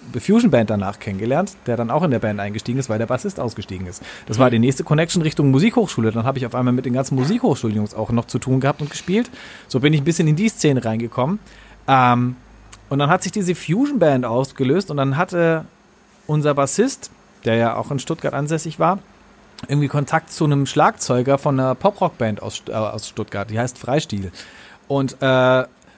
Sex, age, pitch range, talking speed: male, 40-59, 120-170 Hz, 190 wpm